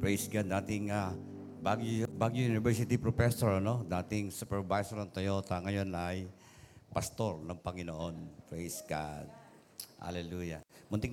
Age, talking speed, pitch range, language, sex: 50-69, 120 wpm, 95-115 Hz, Filipino, male